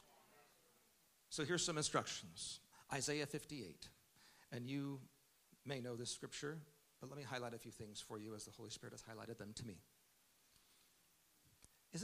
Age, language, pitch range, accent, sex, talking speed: 50-69, English, 115-155 Hz, American, male, 155 wpm